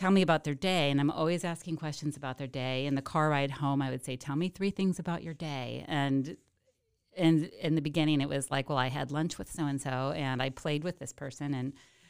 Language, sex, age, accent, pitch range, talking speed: English, female, 30-49, American, 140-180 Hz, 245 wpm